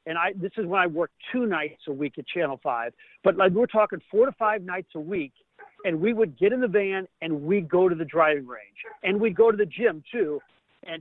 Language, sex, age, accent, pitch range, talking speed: English, male, 50-69, American, 165-215 Hz, 255 wpm